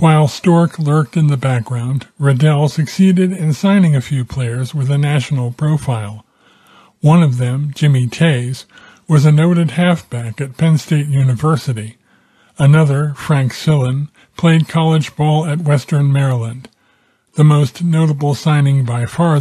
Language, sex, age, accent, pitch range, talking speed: English, male, 40-59, American, 130-155 Hz, 140 wpm